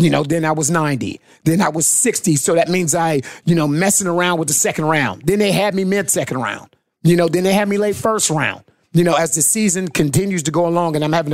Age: 30-49